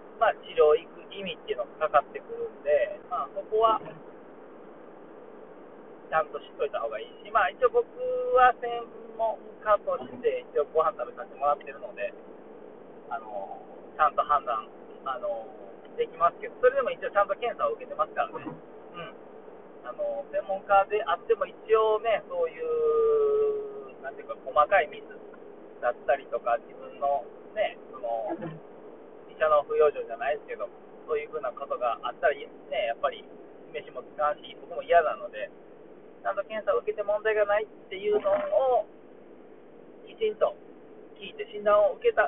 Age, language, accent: 40-59, Japanese, native